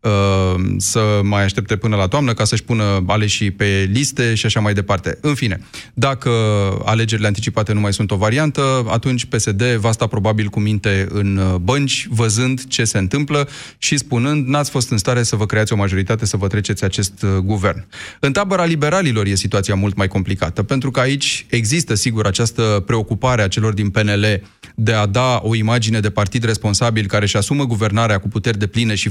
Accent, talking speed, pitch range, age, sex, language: native, 190 wpm, 105-125 Hz, 30-49, male, Romanian